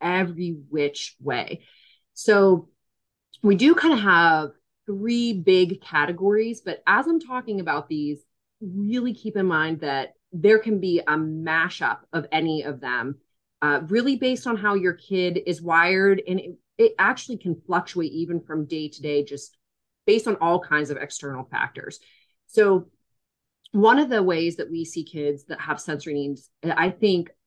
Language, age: English, 30-49